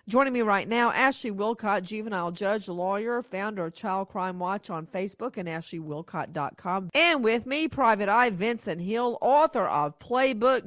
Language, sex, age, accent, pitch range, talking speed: English, female, 50-69, American, 175-235 Hz, 155 wpm